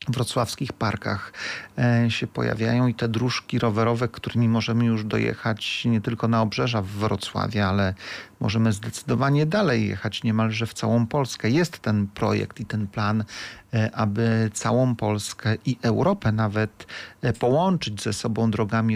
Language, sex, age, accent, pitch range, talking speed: Polish, male, 40-59, native, 110-130 Hz, 135 wpm